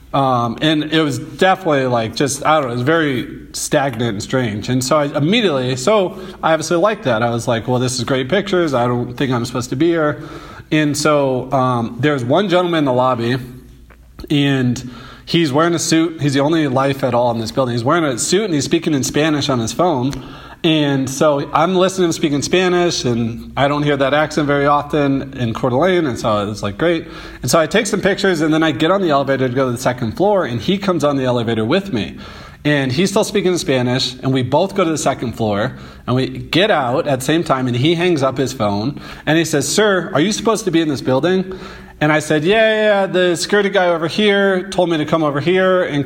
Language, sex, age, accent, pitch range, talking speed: English, male, 30-49, American, 130-170 Hz, 240 wpm